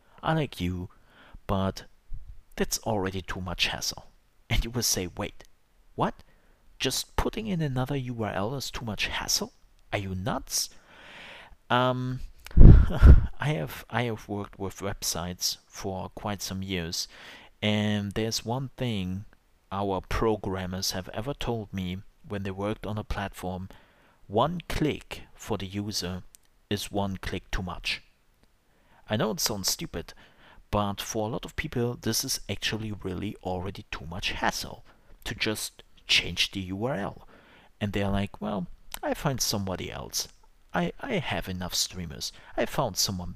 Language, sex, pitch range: English, male, 90-110 Hz